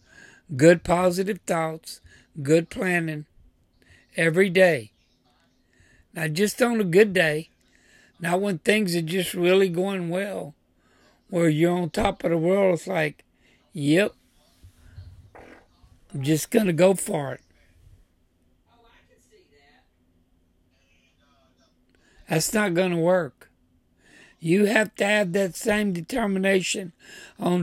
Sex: male